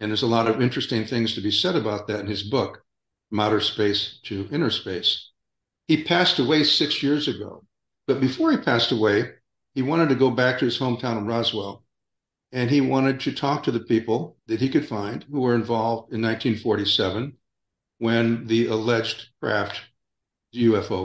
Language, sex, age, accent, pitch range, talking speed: English, male, 60-79, American, 110-130 Hz, 180 wpm